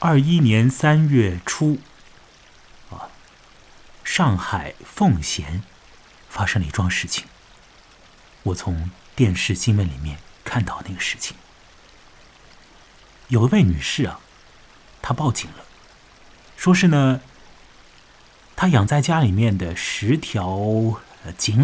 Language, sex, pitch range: Chinese, male, 95-140 Hz